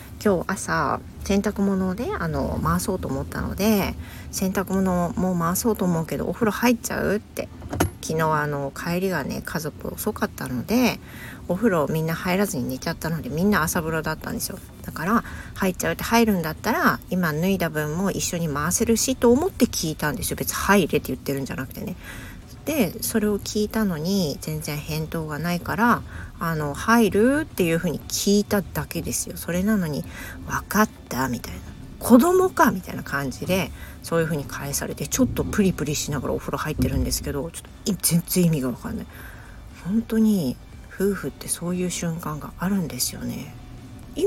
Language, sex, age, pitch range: Japanese, female, 40-59, 150-210 Hz